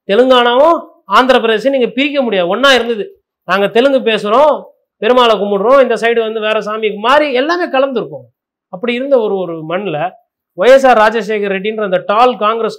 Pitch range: 195-255 Hz